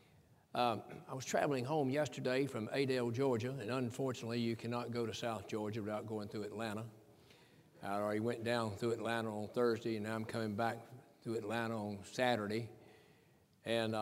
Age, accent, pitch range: 60-79, American, 110-130 Hz